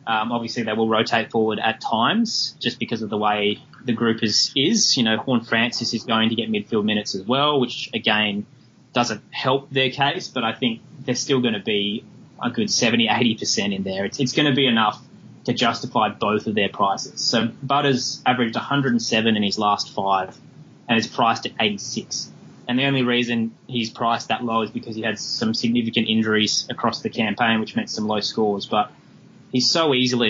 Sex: male